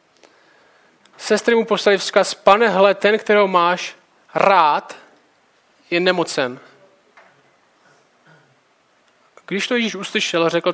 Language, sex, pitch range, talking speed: Czech, male, 175-210 Hz, 95 wpm